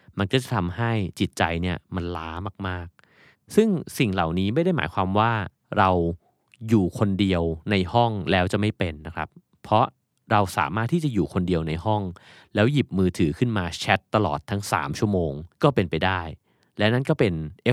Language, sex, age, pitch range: Thai, male, 30-49, 90-120 Hz